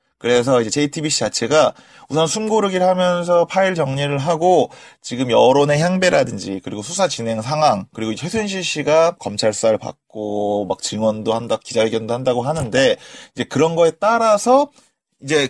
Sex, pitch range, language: male, 115-185 Hz, Korean